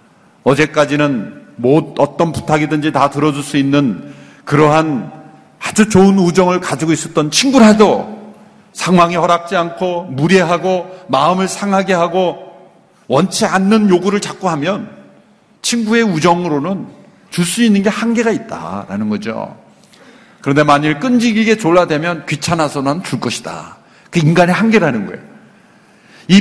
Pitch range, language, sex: 170-225 Hz, Korean, male